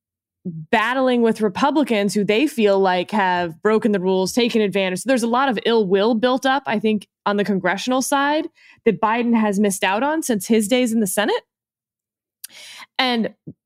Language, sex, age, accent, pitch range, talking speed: English, female, 20-39, American, 205-255 Hz, 180 wpm